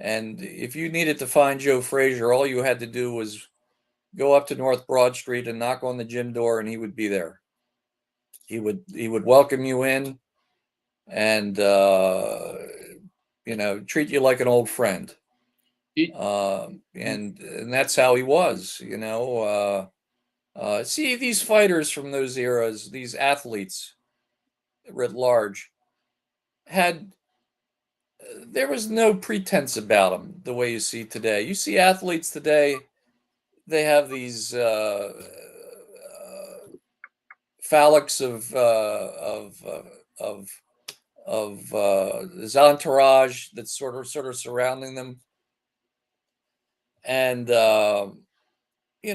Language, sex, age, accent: English, male, 50-69, American